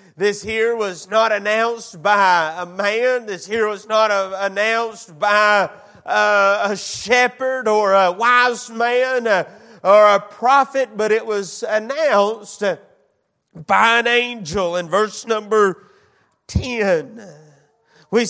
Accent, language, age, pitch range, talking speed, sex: American, English, 30-49, 215-250 Hz, 120 wpm, male